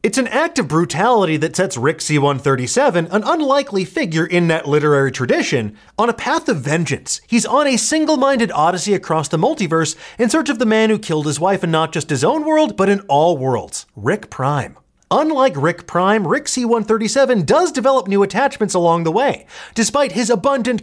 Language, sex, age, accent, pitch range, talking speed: English, male, 30-49, American, 160-235 Hz, 185 wpm